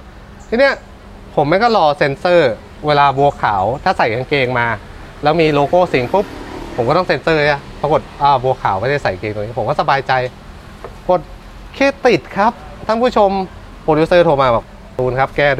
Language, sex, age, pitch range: Thai, male, 20-39, 120-180 Hz